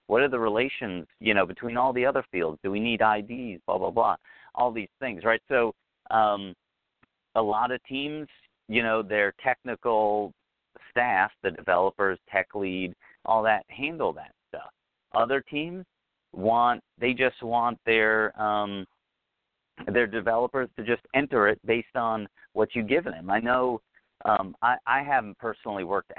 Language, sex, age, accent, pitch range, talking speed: English, male, 40-59, American, 95-125 Hz, 160 wpm